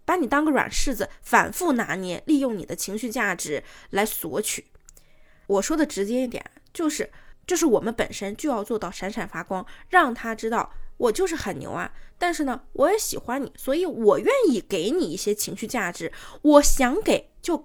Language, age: Chinese, 20-39